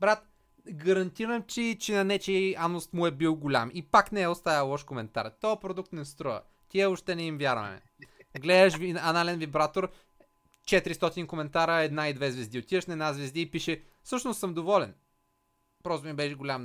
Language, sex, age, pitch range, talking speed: Bulgarian, male, 30-49, 145-190 Hz, 175 wpm